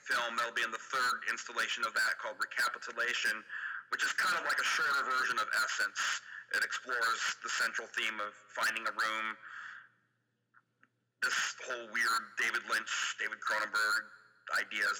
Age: 40-59